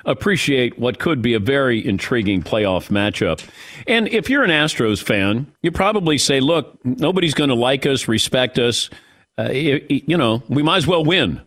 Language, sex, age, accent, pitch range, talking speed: English, male, 50-69, American, 120-155 Hz, 190 wpm